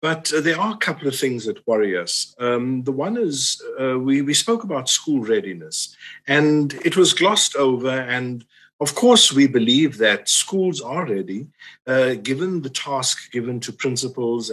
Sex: male